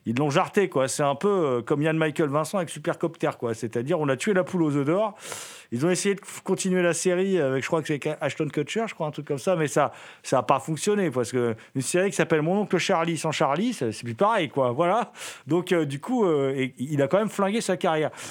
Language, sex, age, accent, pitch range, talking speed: French, male, 40-59, French, 125-185 Hz, 255 wpm